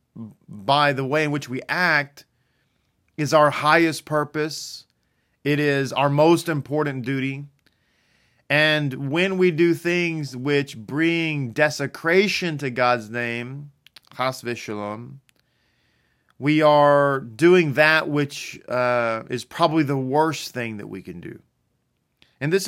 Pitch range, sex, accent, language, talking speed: 120-150 Hz, male, American, English, 120 wpm